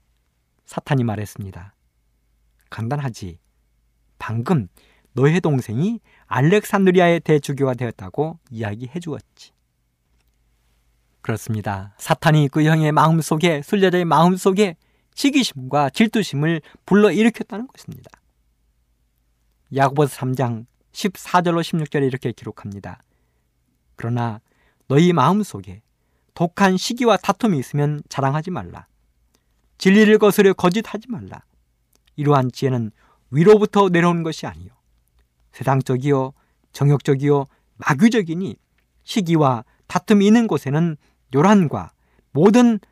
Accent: native